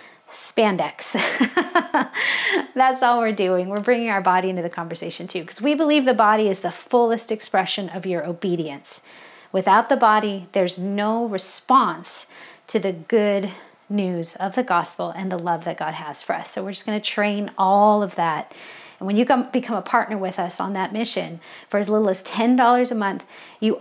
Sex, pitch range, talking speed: female, 200-245 Hz, 190 wpm